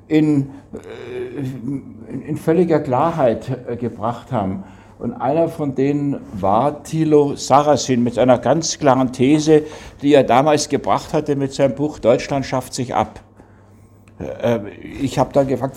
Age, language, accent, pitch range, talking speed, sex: 60-79, German, German, 120-155 Hz, 130 wpm, male